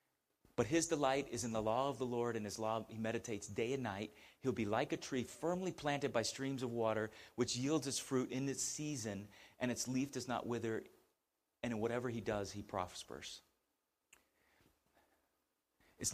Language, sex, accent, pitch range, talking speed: English, male, American, 110-145 Hz, 185 wpm